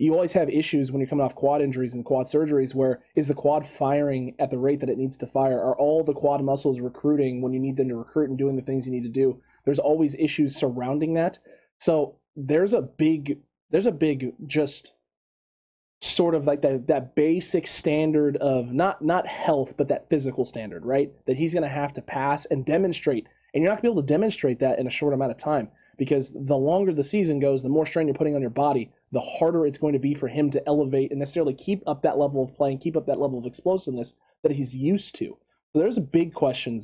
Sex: male